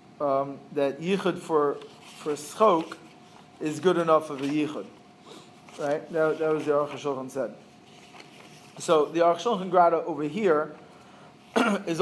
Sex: male